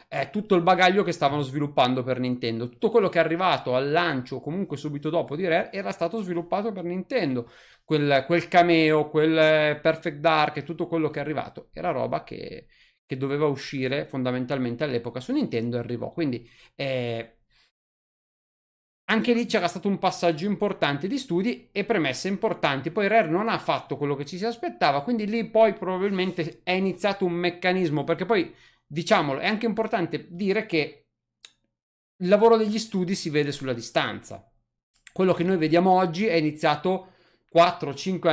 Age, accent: 30-49, native